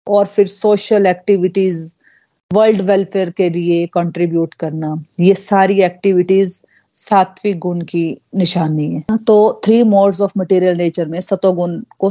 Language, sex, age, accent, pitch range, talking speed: Hindi, female, 30-49, native, 180-220 Hz, 135 wpm